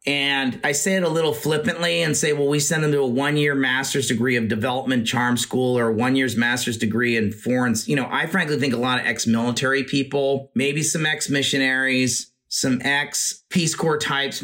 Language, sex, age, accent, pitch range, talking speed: English, male, 30-49, American, 125-145 Hz, 195 wpm